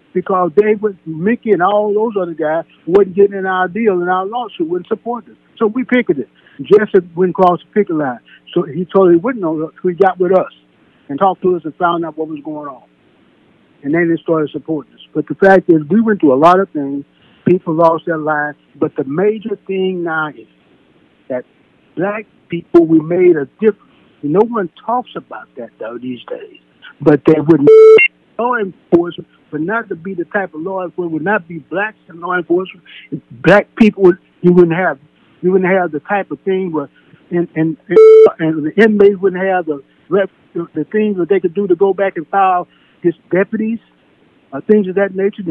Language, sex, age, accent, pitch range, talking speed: English, male, 60-79, American, 165-205 Hz, 210 wpm